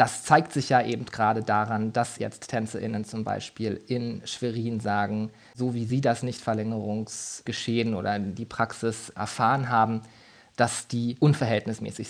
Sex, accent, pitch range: male, German, 115-135 Hz